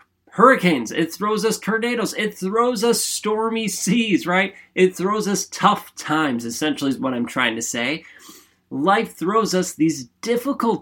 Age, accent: 30-49, American